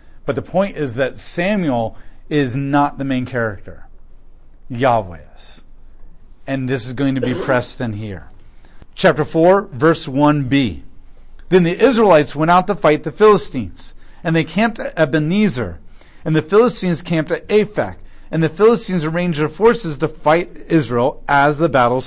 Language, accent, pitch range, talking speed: English, American, 120-165 Hz, 160 wpm